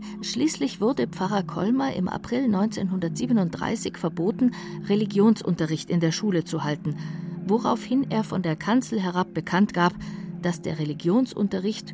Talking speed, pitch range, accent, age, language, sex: 125 wpm, 165-210 Hz, German, 50-69, German, female